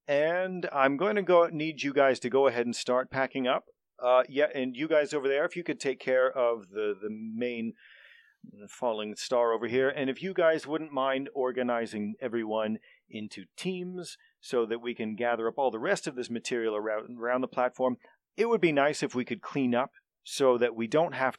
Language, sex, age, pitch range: English, male, 40-59, 115-140 Hz